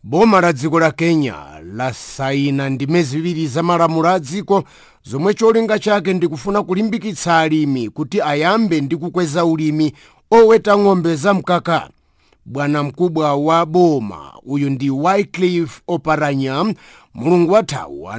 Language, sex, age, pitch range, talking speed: English, male, 50-69, 155-190 Hz, 100 wpm